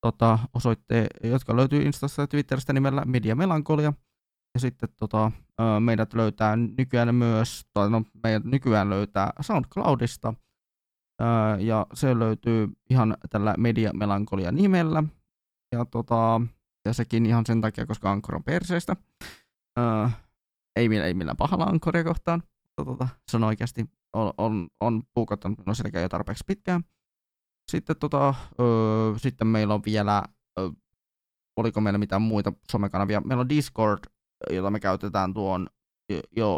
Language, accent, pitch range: Finnish, native, 105-125 Hz